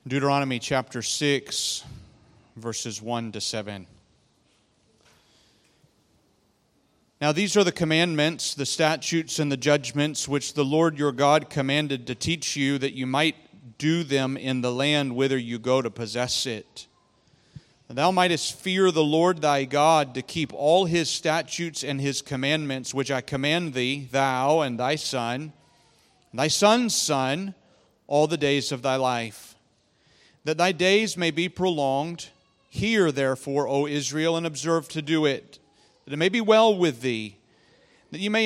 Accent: American